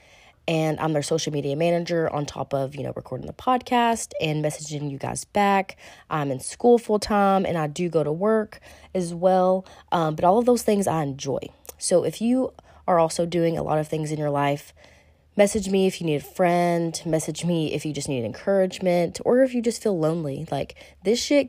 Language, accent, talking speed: English, American, 210 wpm